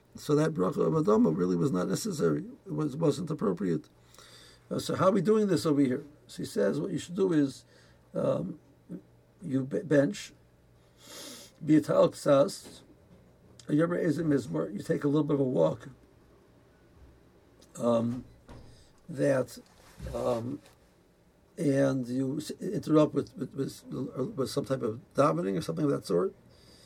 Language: English